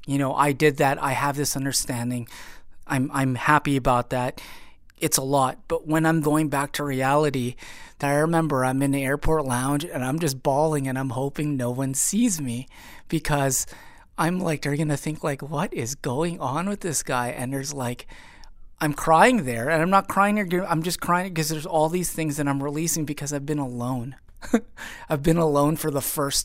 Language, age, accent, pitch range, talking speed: English, 30-49, American, 130-155 Hz, 200 wpm